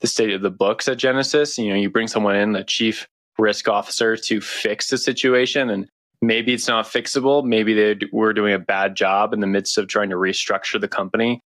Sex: male